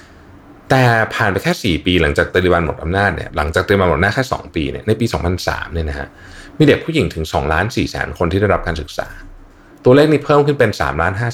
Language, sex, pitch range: Thai, male, 80-110 Hz